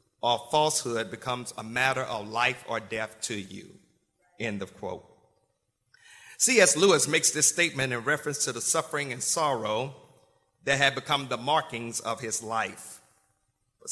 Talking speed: 150 wpm